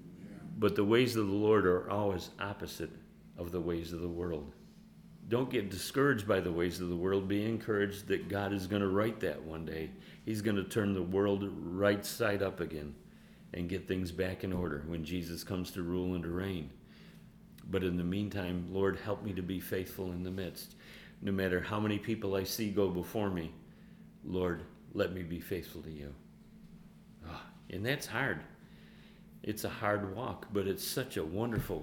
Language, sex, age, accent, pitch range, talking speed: English, male, 40-59, American, 90-105 Hz, 190 wpm